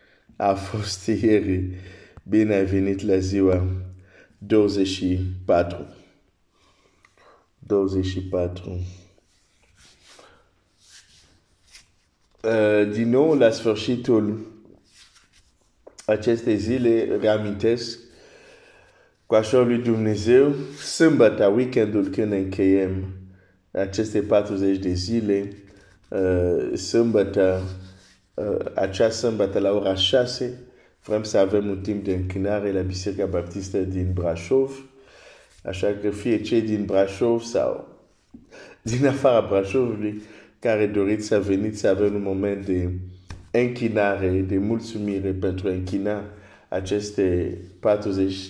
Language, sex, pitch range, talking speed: Romanian, male, 95-110 Hz, 100 wpm